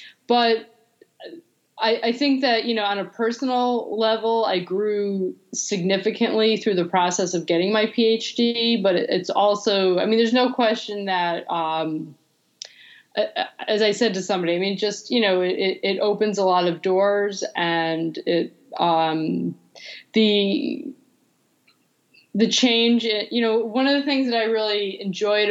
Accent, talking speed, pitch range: American, 150 wpm, 180-225 Hz